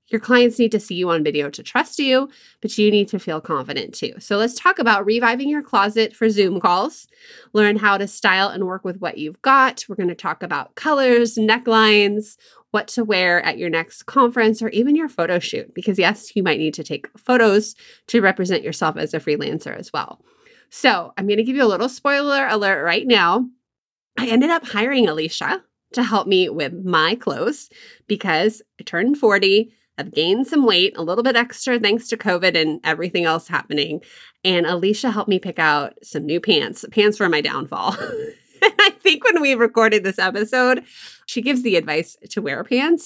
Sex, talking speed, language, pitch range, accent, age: female, 195 wpm, English, 175-240 Hz, American, 20-39